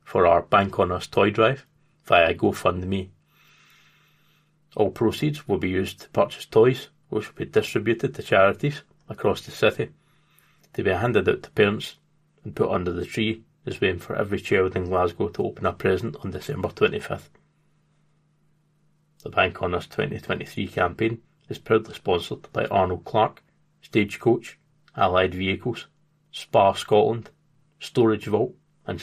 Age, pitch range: 30-49, 105-155 Hz